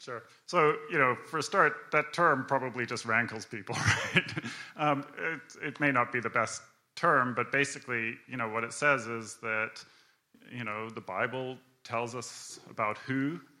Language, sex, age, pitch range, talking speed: English, male, 30-49, 115-130 Hz, 175 wpm